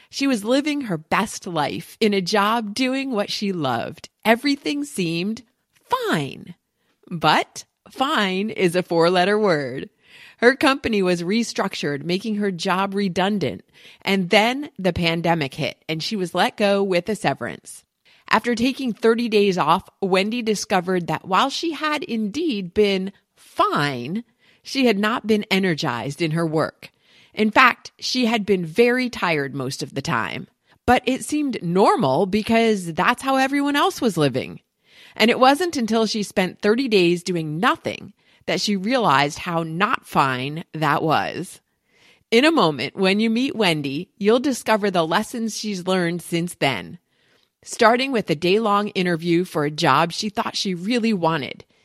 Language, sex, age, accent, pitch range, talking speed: English, female, 40-59, American, 170-235 Hz, 155 wpm